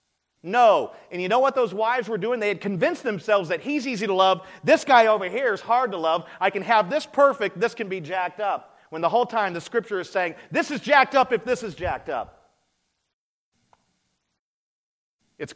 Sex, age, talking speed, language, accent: male, 40-59, 210 wpm, English, American